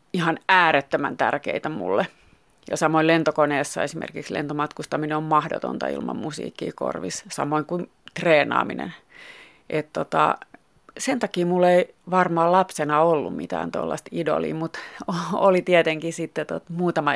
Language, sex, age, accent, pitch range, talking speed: Finnish, female, 30-49, native, 150-205 Hz, 120 wpm